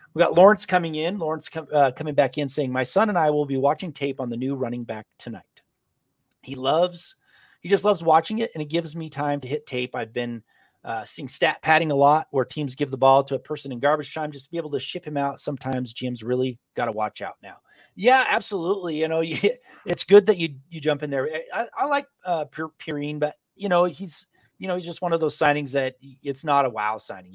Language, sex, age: English, male, 30-49